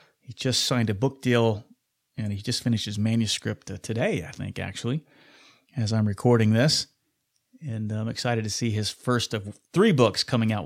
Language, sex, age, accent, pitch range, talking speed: English, male, 30-49, American, 110-135 Hz, 180 wpm